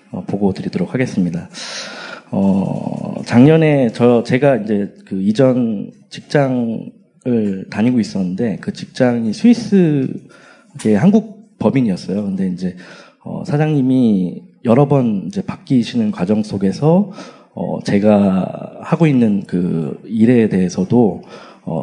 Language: Korean